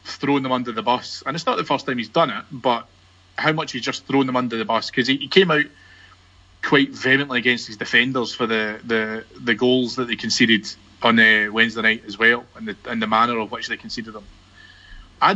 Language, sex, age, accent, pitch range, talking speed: English, male, 30-49, British, 110-145 Hz, 230 wpm